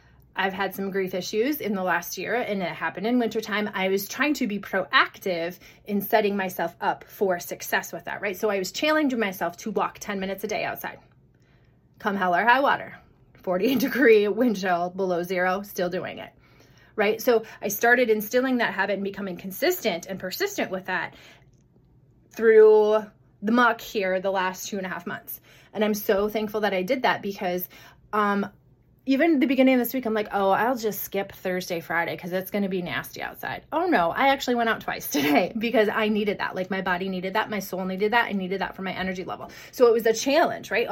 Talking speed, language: 215 wpm, English